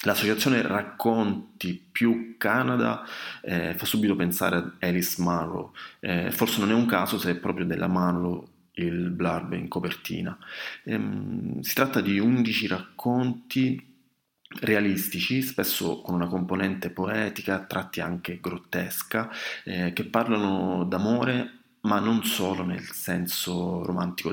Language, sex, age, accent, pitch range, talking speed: Italian, male, 30-49, native, 90-115 Hz, 125 wpm